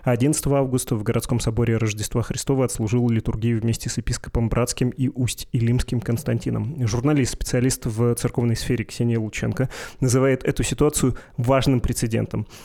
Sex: male